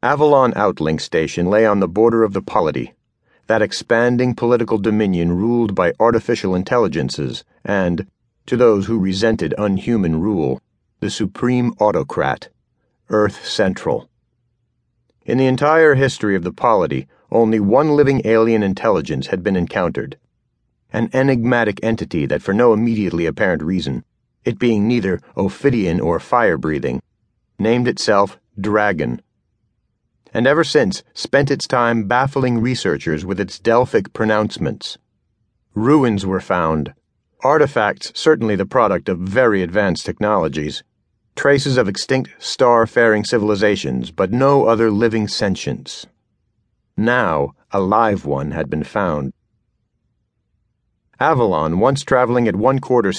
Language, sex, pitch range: English, male, 95-120 Hz